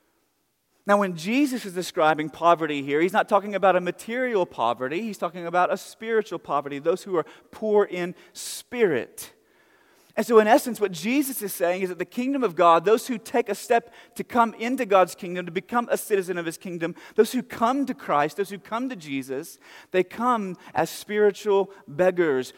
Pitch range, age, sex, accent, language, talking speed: 170-210 Hz, 30-49, male, American, English, 190 wpm